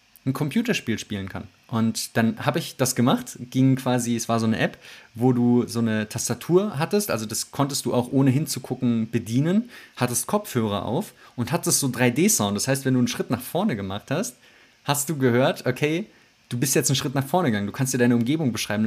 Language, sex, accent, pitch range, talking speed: German, male, German, 120-145 Hz, 210 wpm